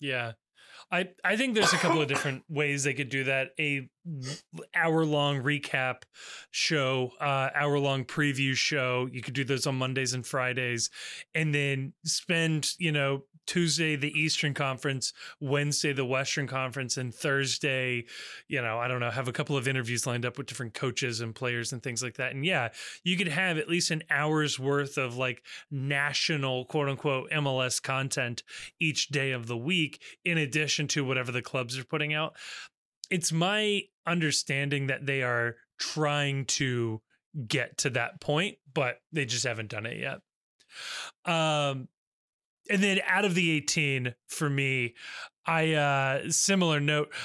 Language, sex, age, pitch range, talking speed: English, male, 20-39, 130-160 Hz, 165 wpm